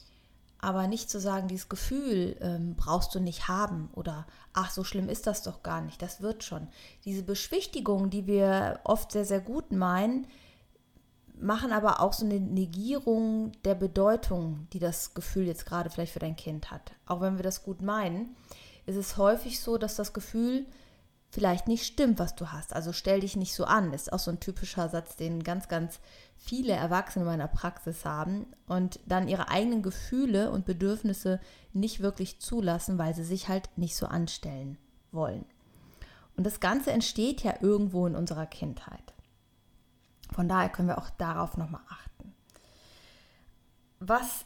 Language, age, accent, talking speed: German, 30-49, German, 170 wpm